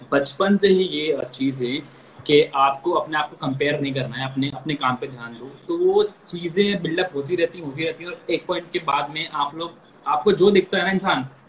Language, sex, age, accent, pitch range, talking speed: Hindi, male, 20-39, native, 160-205 Hz, 230 wpm